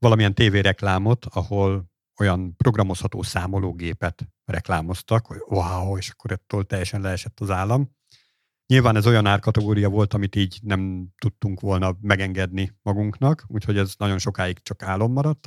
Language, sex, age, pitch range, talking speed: Hungarian, male, 50-69, 95-120 Hz, 140 wpm